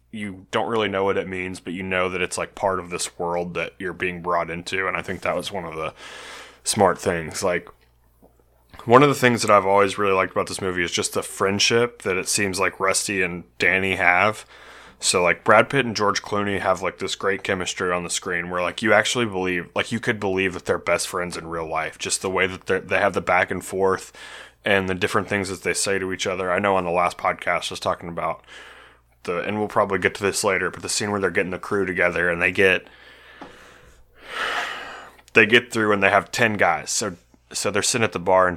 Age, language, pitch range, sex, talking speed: 20-39, English, 85-100 Hz, male, 240 wpm